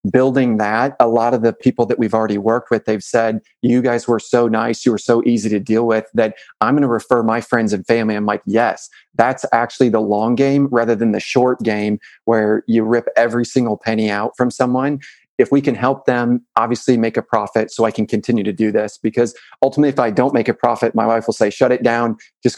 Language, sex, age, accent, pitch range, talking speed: English, male, 30-49, American, 110-125 Hz, 235 wpm